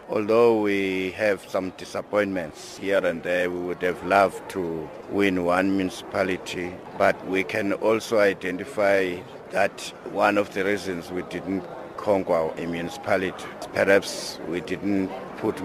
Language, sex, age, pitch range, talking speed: English, male, 60-79, 100-165 Hz, 135 wpm